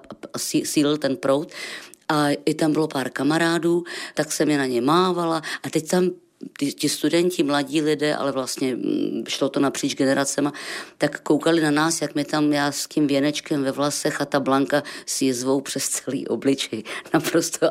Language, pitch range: Czech, 140-160 Hz